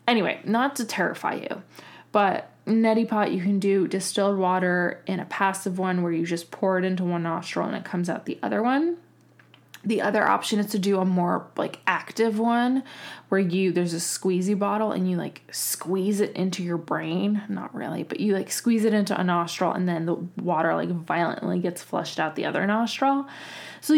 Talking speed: 200 wpm